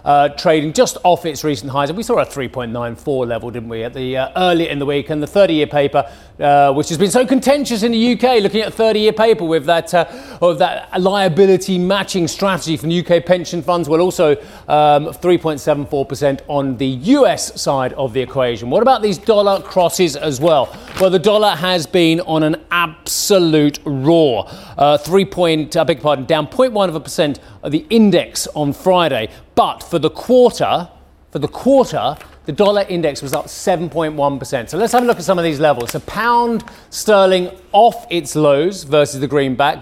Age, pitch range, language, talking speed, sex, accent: 40-59, 145-190 Hz, English, 185 wpm, male, British